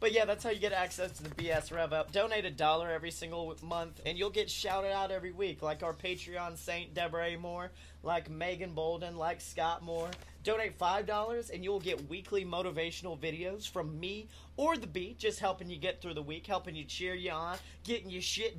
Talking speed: 215 wpm